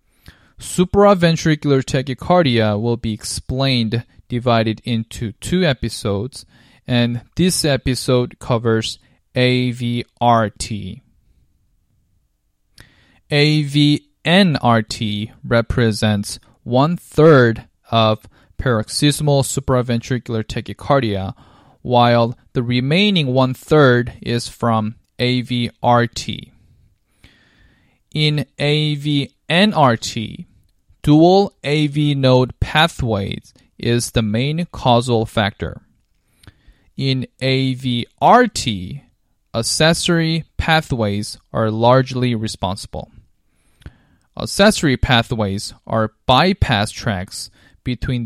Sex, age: male, 20-39